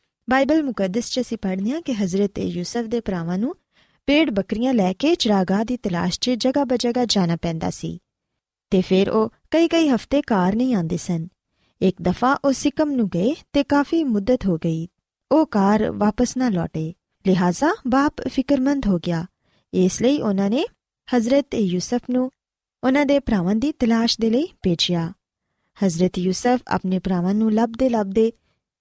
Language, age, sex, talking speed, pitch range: Punjabi, 20-39, female, 145 wpm, 190-270 Hz